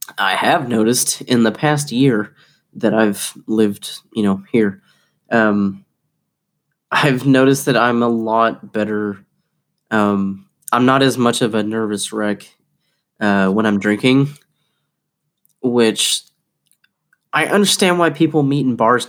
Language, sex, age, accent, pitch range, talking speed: English, male, 20-39, American, 110-145 Hz, 130 wpm